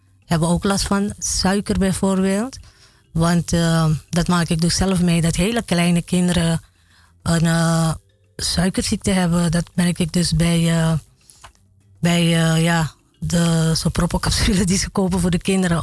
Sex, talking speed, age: female, 150 wpm, 20-39